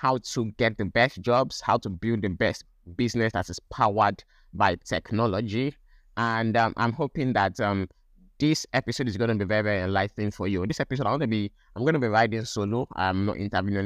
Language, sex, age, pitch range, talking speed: English, male, 20-39, 95-115 Hz, 200 wpm